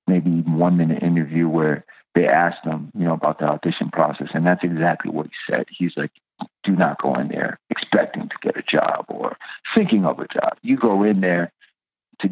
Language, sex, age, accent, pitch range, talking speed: English, male, 50-69, American, 85-95 Hz, 205 wpm